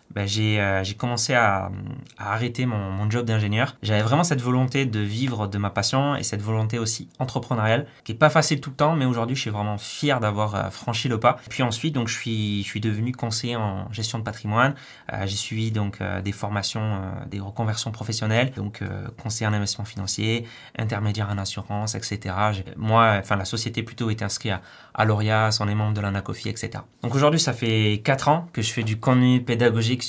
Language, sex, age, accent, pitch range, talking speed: French, male, 20-39, French, 105-125 Hz, 215 wpm